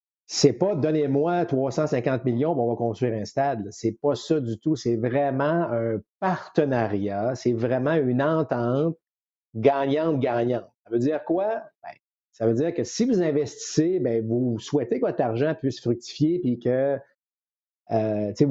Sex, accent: male, Canadian